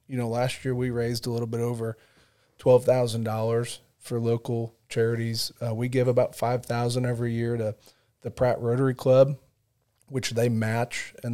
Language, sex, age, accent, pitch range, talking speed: English, male, 40-59, American, 115-125 Hz, 160 wpm